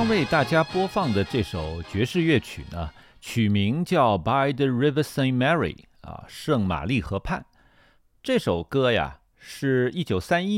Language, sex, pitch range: Chinese, male, 105-160 Hz